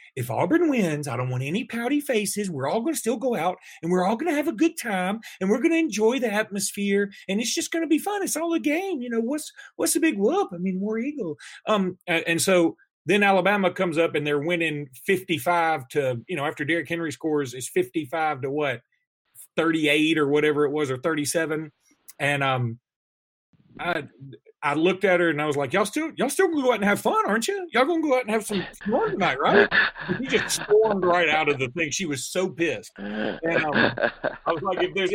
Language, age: English, 40-59